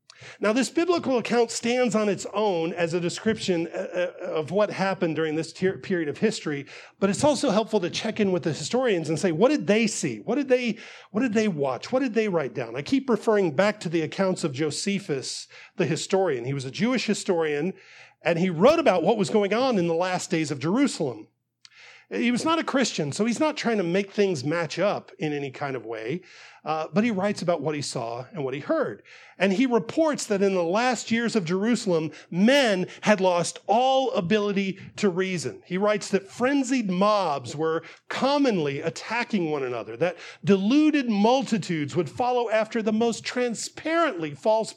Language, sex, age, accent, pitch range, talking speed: English, male, 40-59, American, 170-230 Hz, 190 wpm